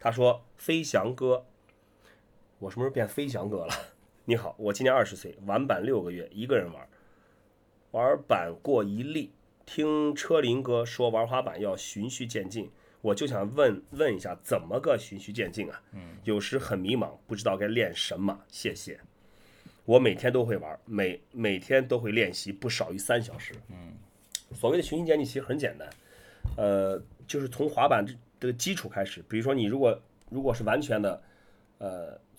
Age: 30-49